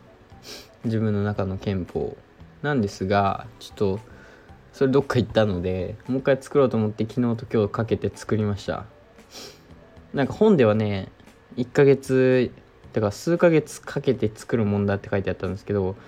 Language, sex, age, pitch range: Japanese, male, 20-39, 95-120 Hz